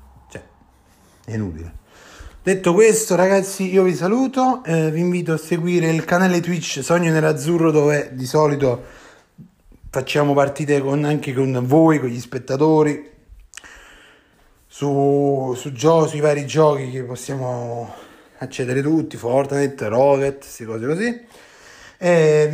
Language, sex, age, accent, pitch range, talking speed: Italian, male, 30-49, native, 135-170 Hz, 125 wpm